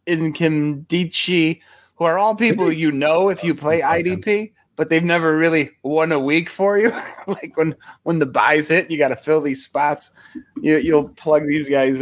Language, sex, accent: English, male, American